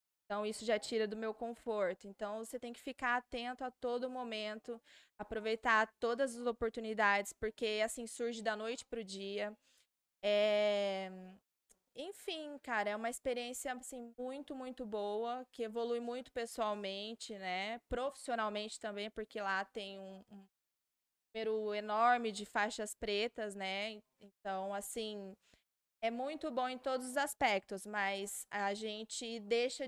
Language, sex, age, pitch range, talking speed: Portuguese, female, 20-39, 205-235 Hz, 135 wpm